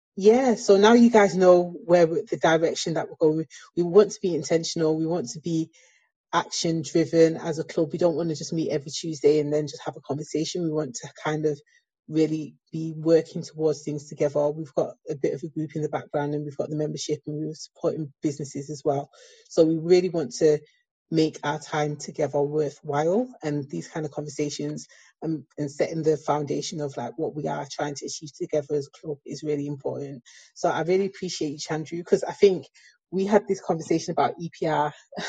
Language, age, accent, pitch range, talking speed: English, 30-49, British, 150-175 Hz, 205 wpm